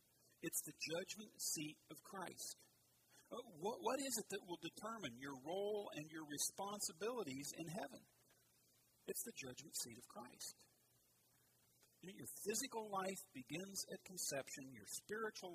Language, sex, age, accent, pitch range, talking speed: English, male, 40-59, American, 135-200 Hz, 125 wpm